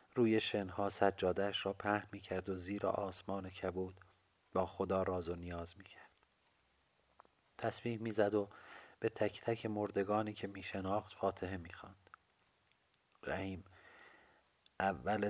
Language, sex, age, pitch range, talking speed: Persian, male, 40-59, 95-105 Hz, 115 wpm